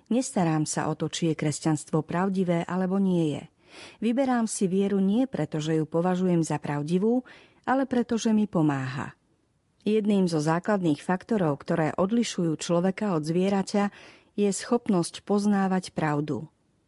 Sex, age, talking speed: female, 40-59, 140 wpm